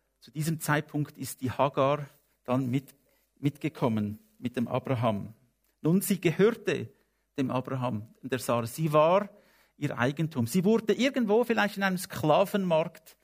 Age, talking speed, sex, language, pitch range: 50-69, 135 wpm, male, English, 130-175 Hz